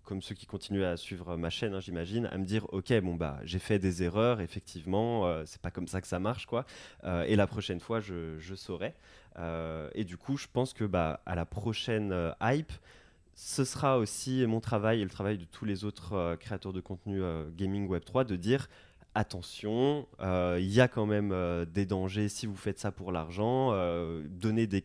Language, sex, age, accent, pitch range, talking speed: French, male, 20-39, French, 90-115 Hz, 225 wpm